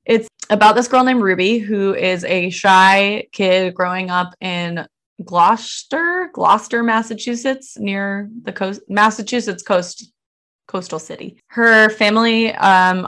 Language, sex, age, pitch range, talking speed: English, female, 20-39, 175-215 Hz, 125 wpm